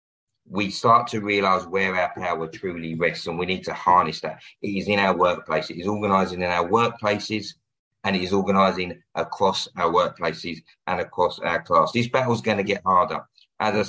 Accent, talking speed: British, 200 wpm